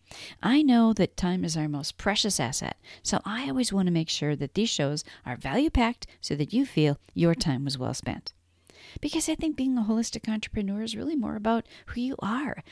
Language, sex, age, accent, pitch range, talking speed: English, female, 40-59, American, 150-235 Hz, 210 wpm